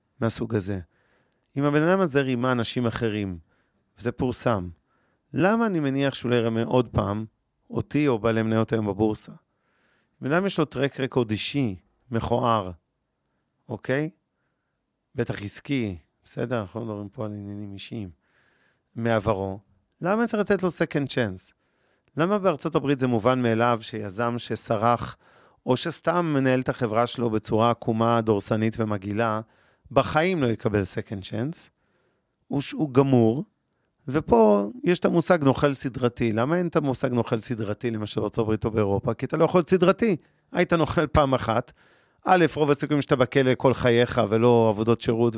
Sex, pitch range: male, 110-145 Hz